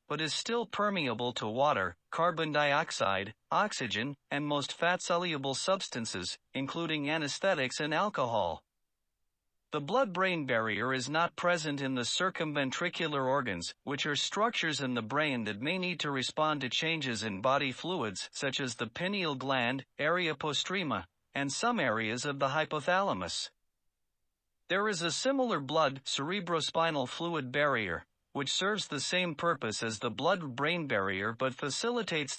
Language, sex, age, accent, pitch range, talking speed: English, male, 50-69, American, 130-170 Hz, 135 wpm